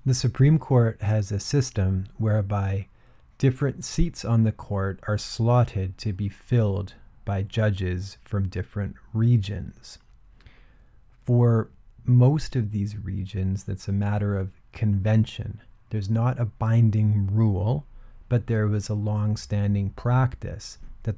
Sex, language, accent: male, English, American